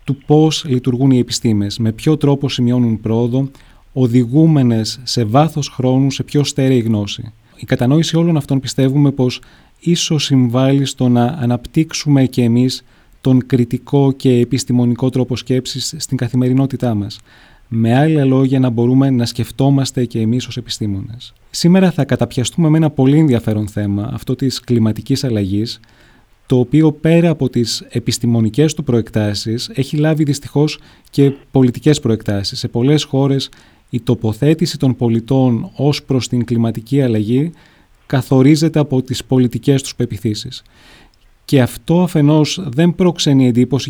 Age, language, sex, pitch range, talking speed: 30-49, Greek, male, 120-145 Hz, 140 wpm